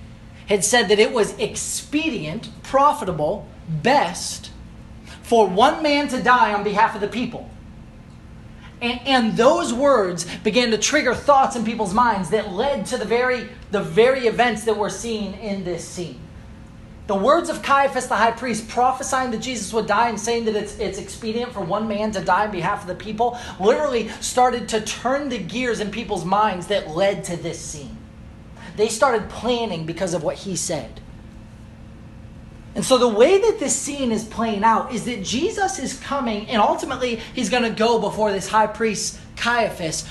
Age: 30-49